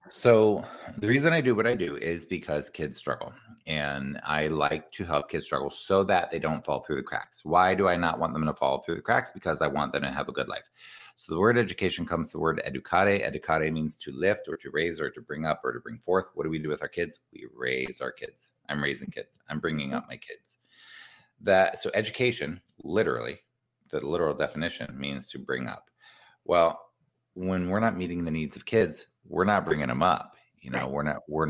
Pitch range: 75-100 Hz